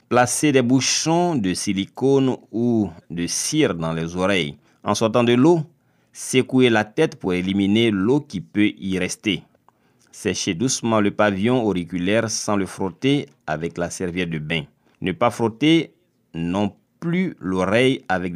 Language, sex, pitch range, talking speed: French, male, 90-125 Hz, 145 wpm